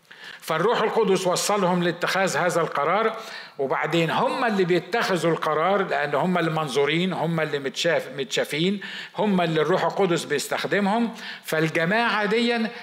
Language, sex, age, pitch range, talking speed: Arabic, male, 50-69, 155-210 Hz, 115 wpm